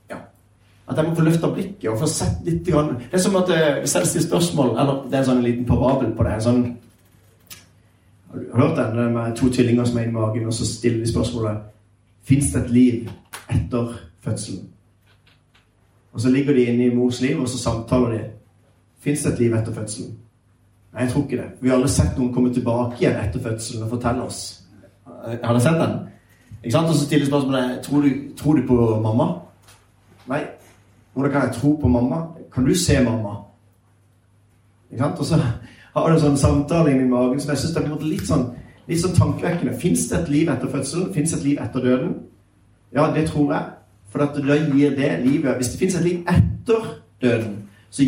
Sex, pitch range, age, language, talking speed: male, 110-140 Hz, 30-49, English, 195 wpm